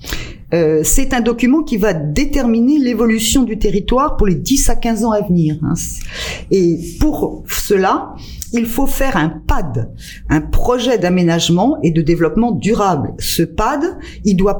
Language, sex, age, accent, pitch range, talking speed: French, female, 50-69, French, 170-240 Hz, 155 wpm